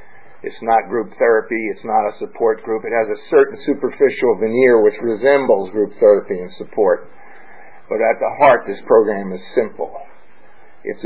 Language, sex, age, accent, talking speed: English, male, 50-69, American, 165 wpm